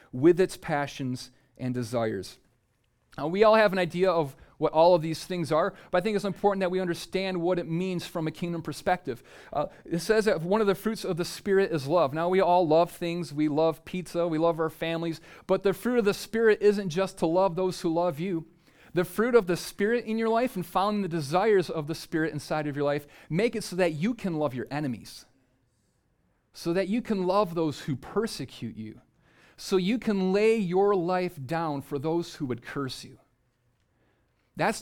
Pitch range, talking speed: 155-190 Hz, 210 wpm